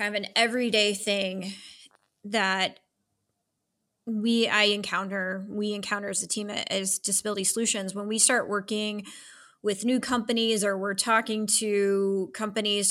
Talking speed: 135 wpm